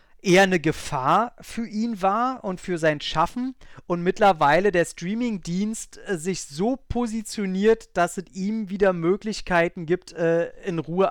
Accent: German